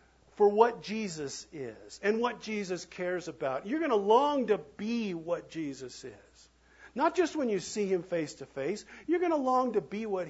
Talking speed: 200 wpm